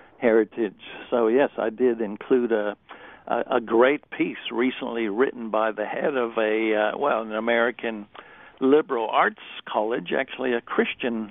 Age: 60-79